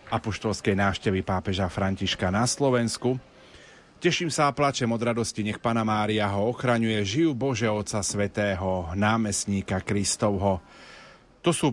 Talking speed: 130 wpm